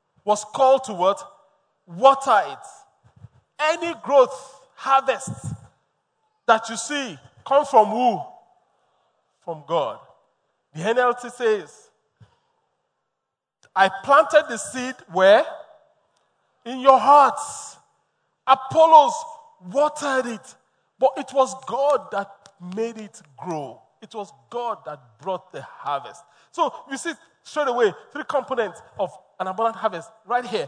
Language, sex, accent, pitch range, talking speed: English, male, Nigerian, 190-280 Hz, 115 wpm